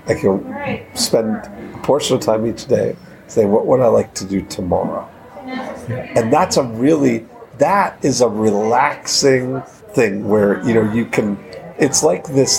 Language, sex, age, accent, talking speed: English, male, 50-69, American, 160 wpm